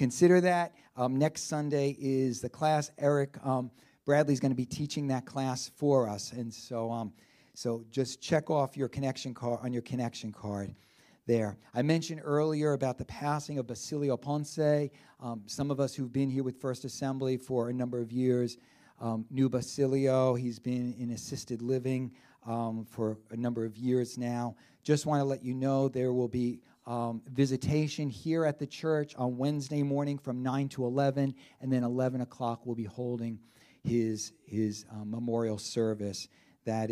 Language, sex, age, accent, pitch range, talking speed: English, male, 40-59, American, 110-135 Hz, 175 wpm